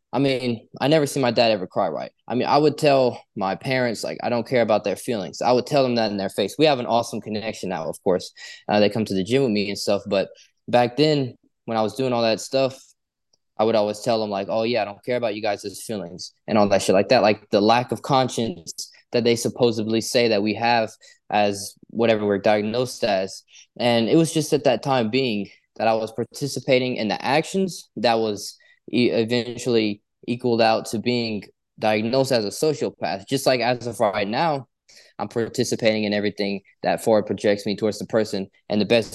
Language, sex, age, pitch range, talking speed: English, male, 20-39, 105-125 Hz, 220 wpm